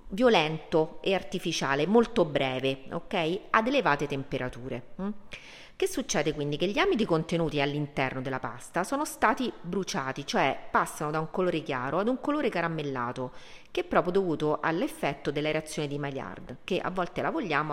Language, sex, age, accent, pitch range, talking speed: Italian, female, 40-59, native, 135-180 Hz, 155 wpm